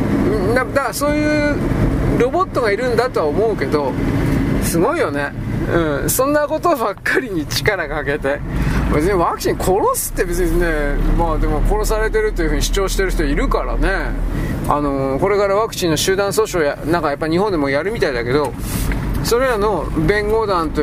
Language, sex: Japanese, male